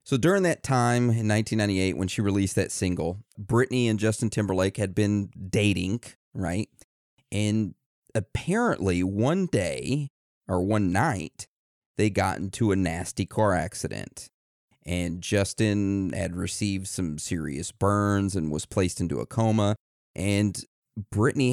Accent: American